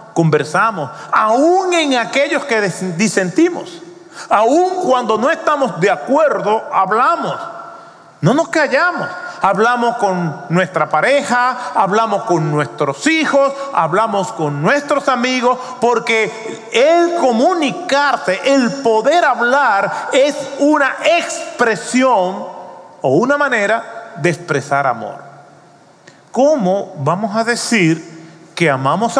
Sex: male